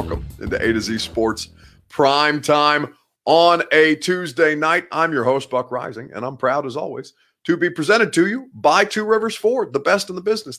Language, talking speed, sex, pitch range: English, 205 wpm, male, 120-170 Hz